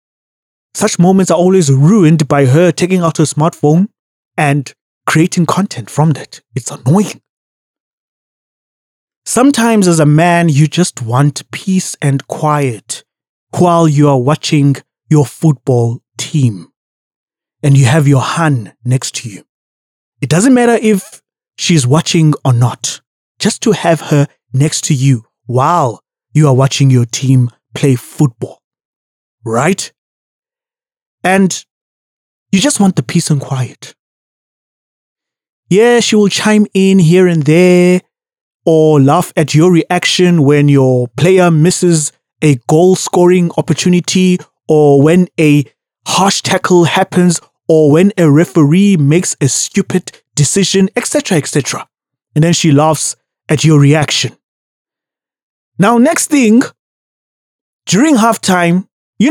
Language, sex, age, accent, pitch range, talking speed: English, male, 20-39, South African, 140-185 Hz, 125 wpm